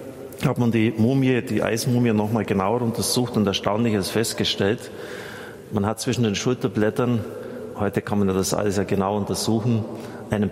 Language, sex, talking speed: German, male, 155 wpm